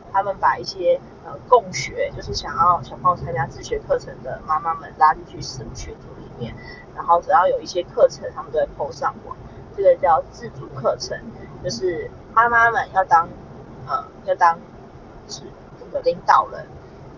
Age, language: 20-39, Chinese